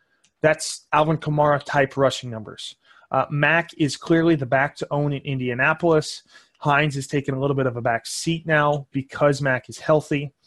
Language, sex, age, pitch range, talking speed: English, male, 20-39, 135-155 Hz, 170 wpm